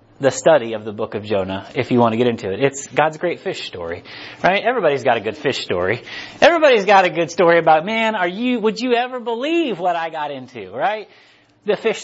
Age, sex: 30-49, male